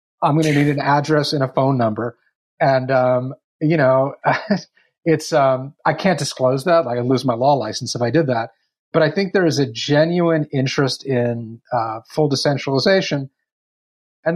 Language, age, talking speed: English, 30-49, 175 wpm